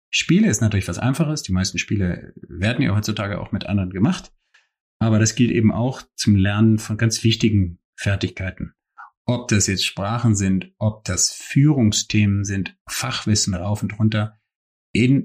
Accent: German